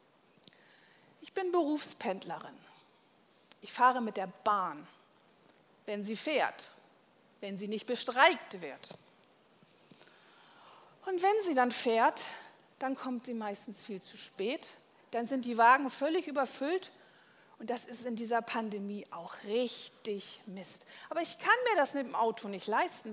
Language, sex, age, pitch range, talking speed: German, female, 40-59, 215-300 Hz, 140 wpm